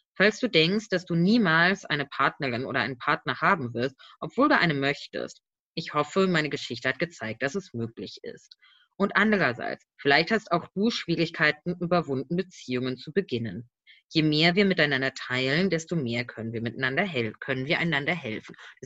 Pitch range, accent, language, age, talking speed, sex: 145-195 Hz, German, German, 20-39, 170 wpm, female